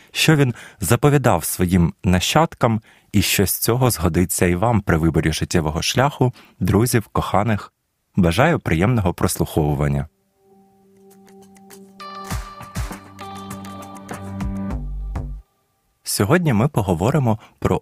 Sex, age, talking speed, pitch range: male, 20-39, 85 wpm, 85-125 Hz